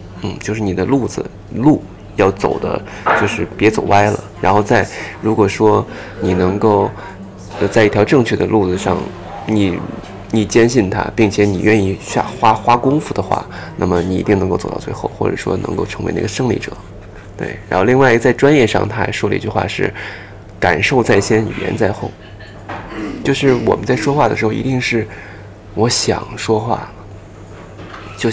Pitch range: 100-110 Hz